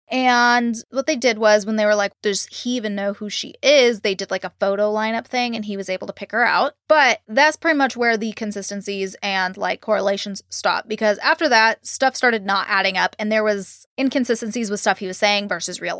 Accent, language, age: American, English, 20-39